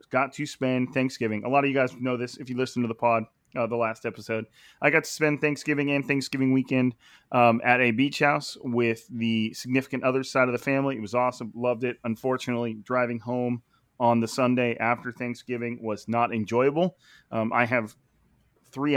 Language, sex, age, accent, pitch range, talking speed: English, male, 30-49, American, 120-140 Hz, 195 wpm